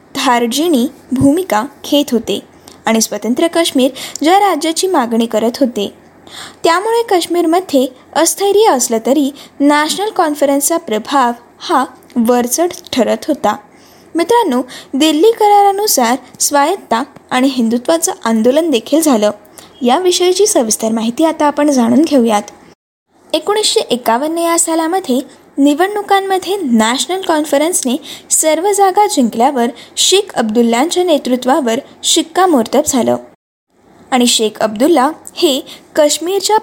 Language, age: Marathi, 20-39